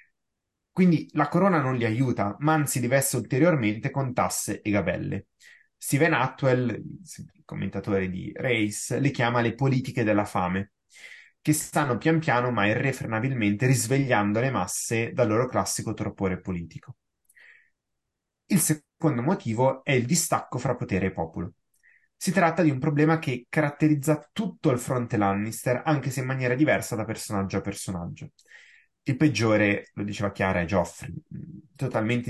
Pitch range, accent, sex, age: 105-140 Hz, native, male, 20-39